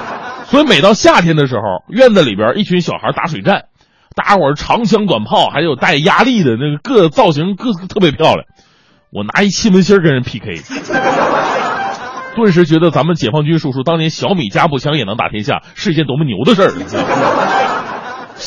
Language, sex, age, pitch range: Chinese, male, 30-49, 145-220 Hz